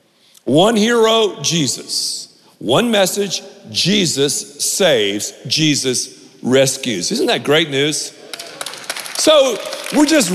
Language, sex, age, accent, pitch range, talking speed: English, male, 50-69, American, 145-210 Hz, 95 wpm